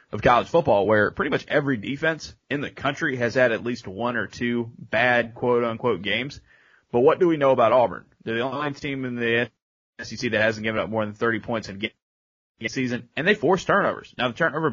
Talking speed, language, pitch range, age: 215 wpm, English, 110-130 Hz, 30-49